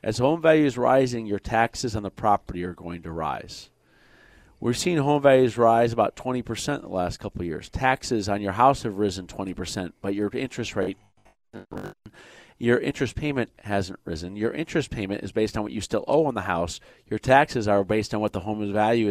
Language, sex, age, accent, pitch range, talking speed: English, male, 40-59, American, 100-130 Hz, 205 wpm